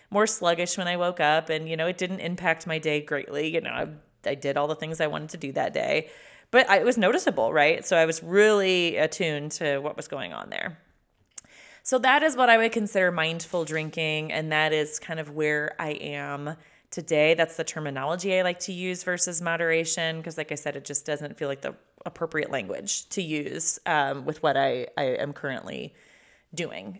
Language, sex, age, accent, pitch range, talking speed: English, female, 30-49, American, 155-195 Hz, 210 wpm